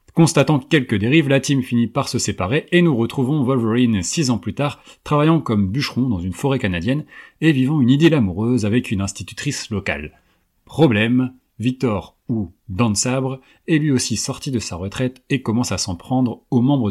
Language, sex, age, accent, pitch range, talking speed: French, male, 30-49, French, 105-135 Hz, 185 wpm